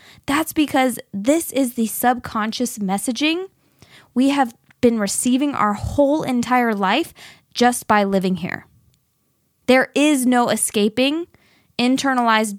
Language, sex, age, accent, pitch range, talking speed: English, female, 20-39, American, 205-255 Hz, 115 wpm